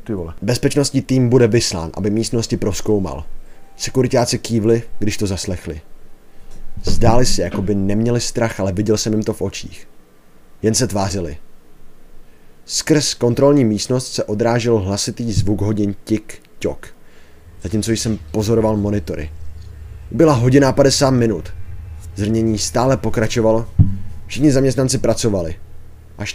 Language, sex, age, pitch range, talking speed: Czech, male, 30-49, 85-115 Hz, 120 wpm